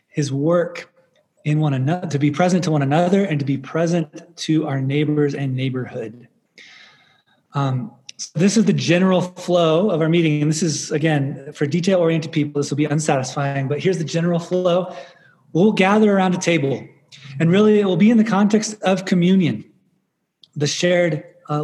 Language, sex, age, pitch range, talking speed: English, male, 20-39, 150-185 Hz, 180 wpm